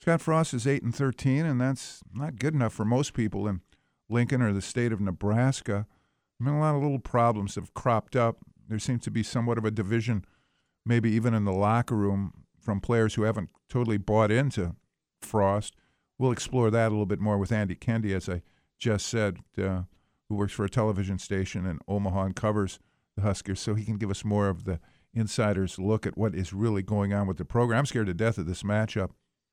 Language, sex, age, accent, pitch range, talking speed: English, male, 50-69, American, 95-120 Hz, 215 wpm